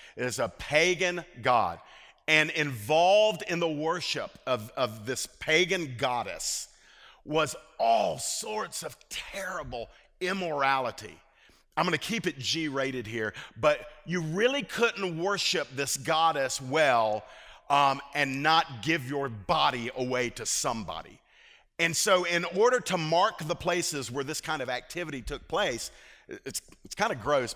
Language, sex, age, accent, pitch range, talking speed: English, male, 50-69, American, 135-175 Hz, 140 wpm